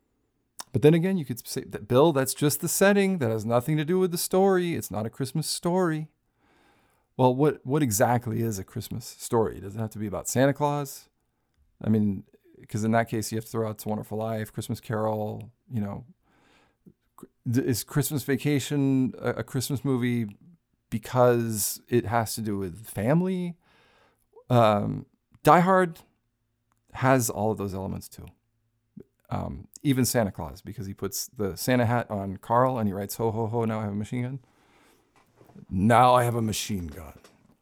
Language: English